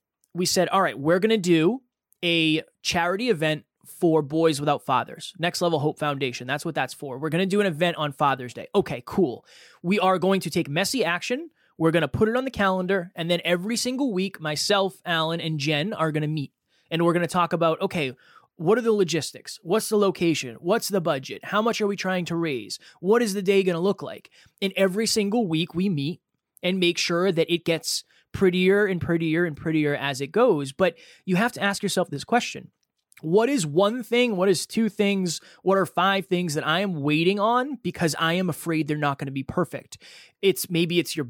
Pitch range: 155-195 Hz